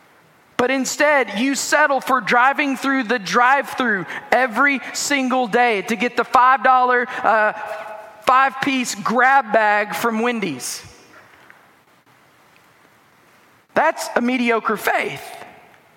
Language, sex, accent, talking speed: English, male, American, 100 wpm